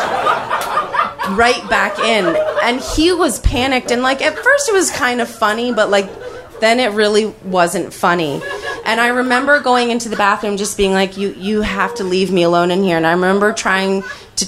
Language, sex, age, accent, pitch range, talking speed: English, female, 30-49, American, 190-255 Hz, 195 wpm